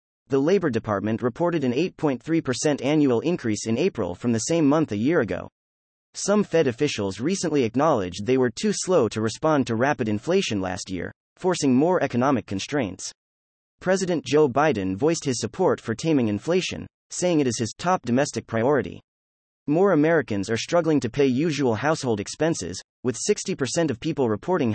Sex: male